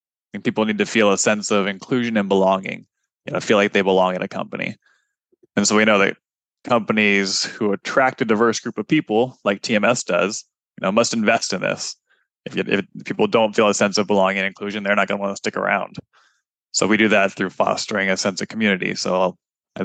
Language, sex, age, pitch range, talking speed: English, male, 20-39, 100-115 Hz, 220 wpm